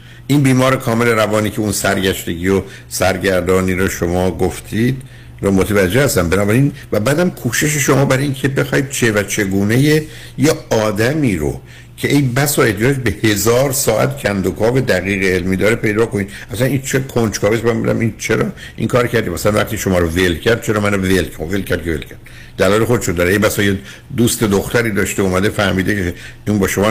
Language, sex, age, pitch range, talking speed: Persian, male, 60-79, 95-120 Hz, 180 wpm